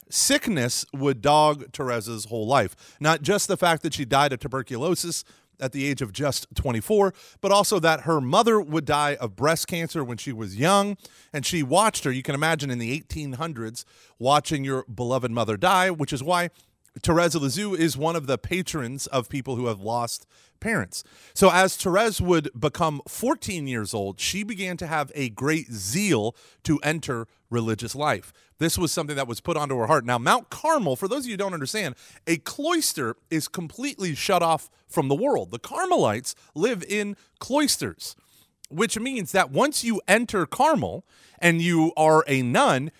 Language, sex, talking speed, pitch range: English, male, 180 wpm, 135-195 Hz